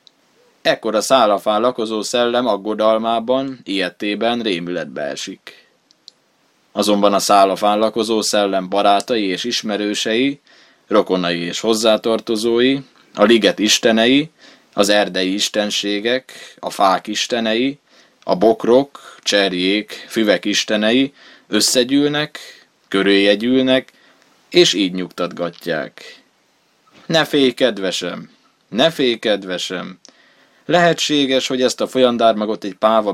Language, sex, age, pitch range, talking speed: Hungarian, male, 20-39, 100-125 Hz, 95 wpm